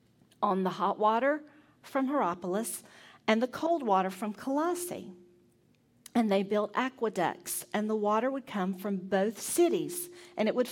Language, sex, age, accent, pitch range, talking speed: English, female, 40-59, American, 195-255 Hz, 150 wpm